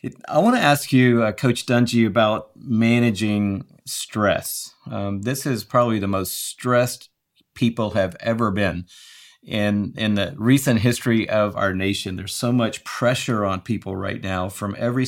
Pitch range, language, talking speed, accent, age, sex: 100-125 Hz, English, 160 wpm, American, 50-69, male